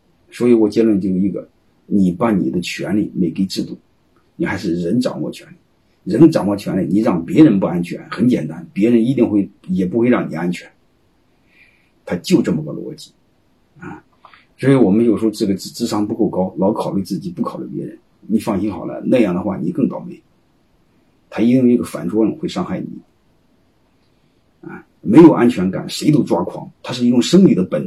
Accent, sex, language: native, male, Chinese